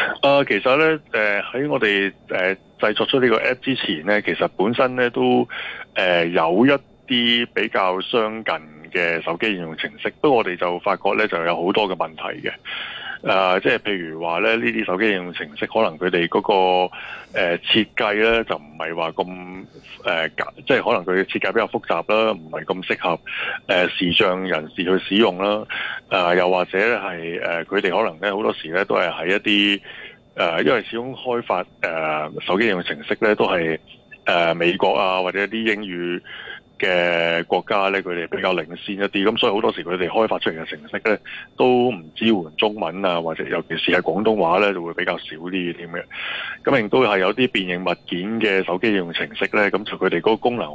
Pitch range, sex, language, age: 85-105 Hz, male, Chinese, 20-39